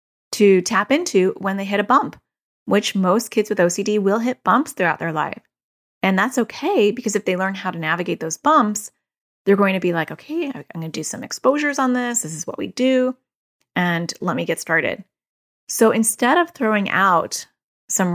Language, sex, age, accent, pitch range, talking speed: English, female, 30-49, American, 175-235 Hz, 200 wpm